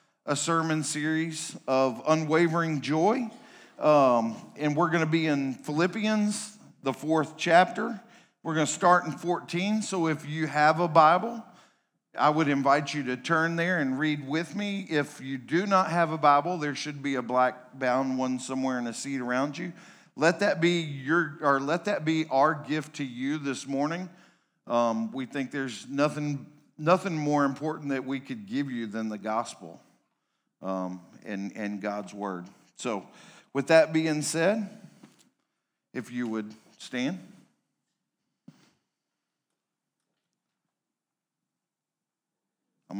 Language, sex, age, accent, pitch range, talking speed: English, male, 50-69, American, 130-175 Hz, 145 wpm